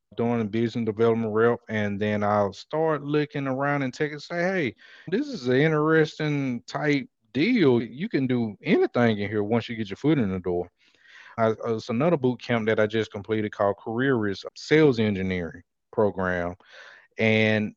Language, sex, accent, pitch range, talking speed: English, male, American, 110-130 Hz, 175 wpm